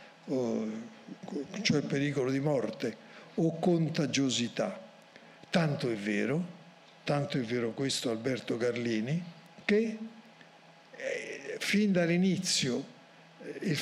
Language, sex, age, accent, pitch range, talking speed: Italian, male, 60-79, native, 130-175 Hz, 85 wpm